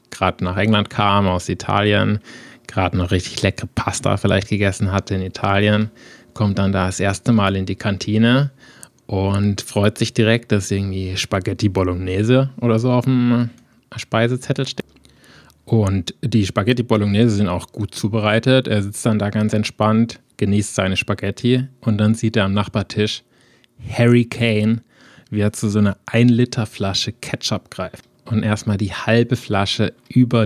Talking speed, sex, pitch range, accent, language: 155 wpm, male, 95-115 Hz, German, German